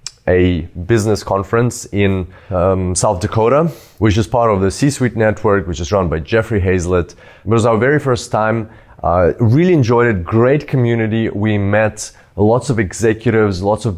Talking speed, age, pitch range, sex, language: 170 wpm, 20-39, 95-115 Hz, male, English